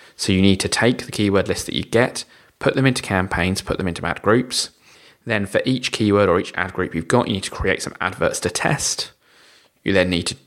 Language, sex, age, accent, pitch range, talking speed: English, male, 20-39, British, 90-110 Hz, 240 wpm